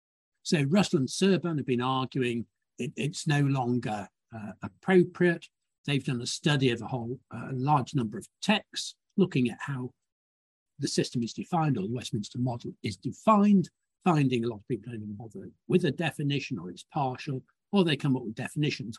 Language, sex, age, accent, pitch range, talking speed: English, male, 60-79, British, 125-170 Hz, 185 wpm